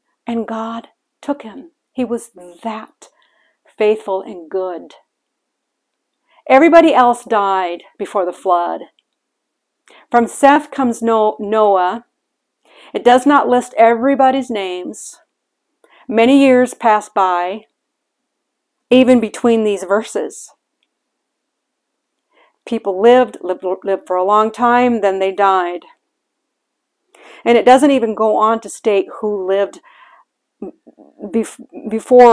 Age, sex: 50-69, female